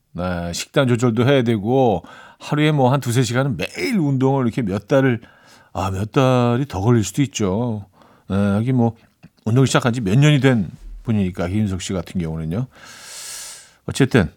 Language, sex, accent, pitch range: Korean, male, native, 100-145 Hz